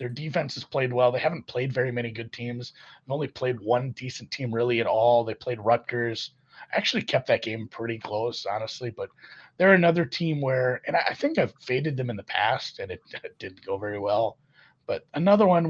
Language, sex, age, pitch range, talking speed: English, male, 30-49, 115-155 Hz, 210 wpm